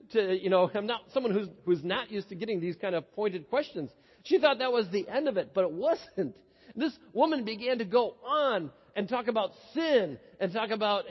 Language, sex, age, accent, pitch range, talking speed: English, male, 40-59, American, 190-255 Hz, 220 wpm